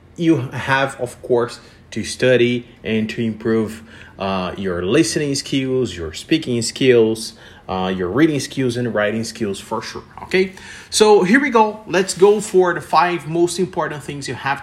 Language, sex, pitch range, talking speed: English, male, 120-180 Hz, 165 wpm